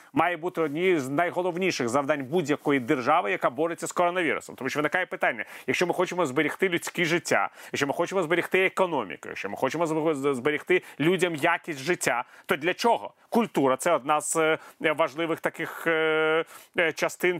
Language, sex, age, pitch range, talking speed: Ukrainian, male, 30-49, 150-175 Hz, 155 wpm